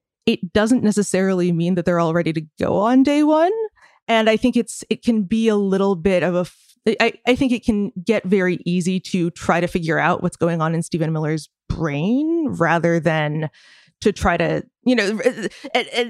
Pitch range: 170-230 Hz